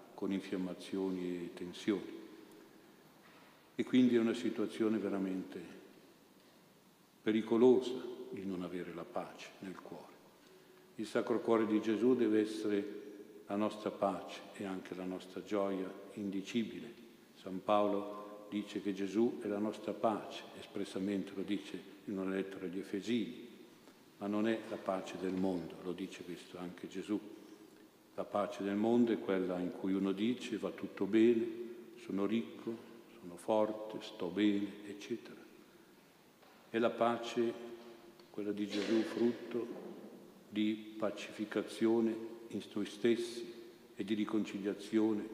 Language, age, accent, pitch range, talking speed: Italian, 50-69, native, 100-115 Hz, 130 wpm